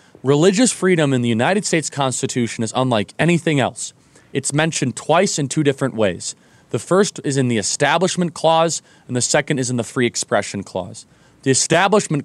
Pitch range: 120-165 Hz